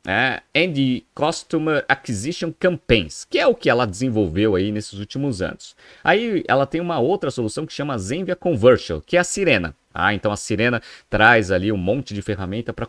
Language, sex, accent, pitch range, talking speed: Portuguese, male, Brazilian, 105-150 Hz, 180 wpm